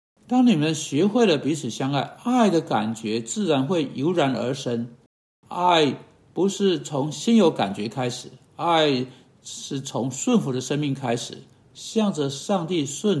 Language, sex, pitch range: Chinese, male, 135-205 Hz